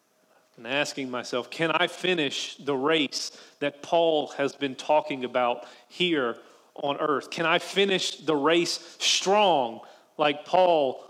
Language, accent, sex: English, American, male